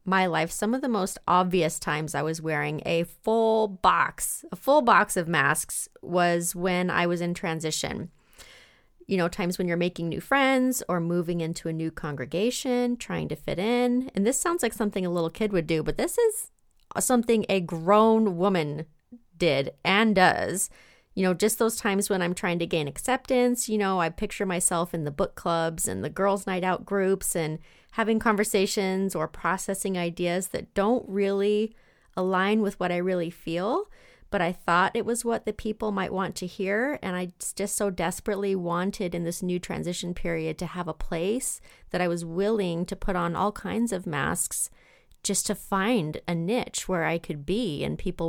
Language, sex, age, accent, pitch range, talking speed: English, female, 30-49, American, 170-215 Hz, 190 wpm